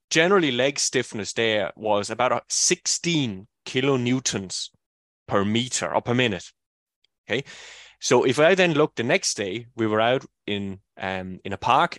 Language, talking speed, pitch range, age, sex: English, 150 wpm, 105-140 Hz, 20-39, male